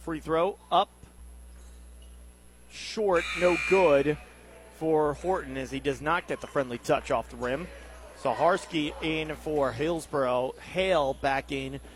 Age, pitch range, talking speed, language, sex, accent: 30-49, 125-185 Hz, 130 wpm, English, male, American